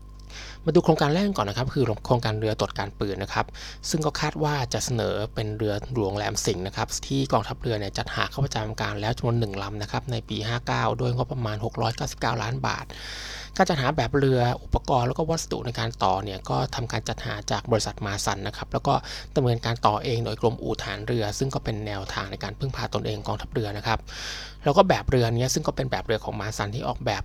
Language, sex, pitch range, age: Thai, male, 110-130 Hz, 20-39